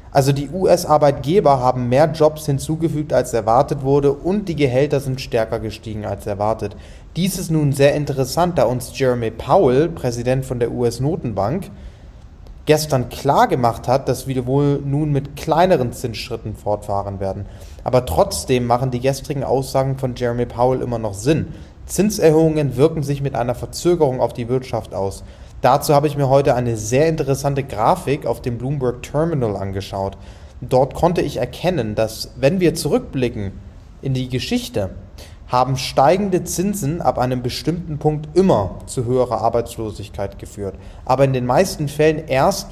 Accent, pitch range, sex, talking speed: German, 115-145 Hz, male, 155 wpm